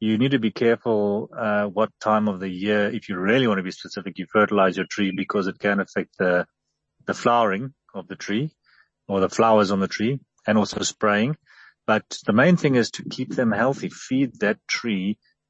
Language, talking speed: German, 205 wpm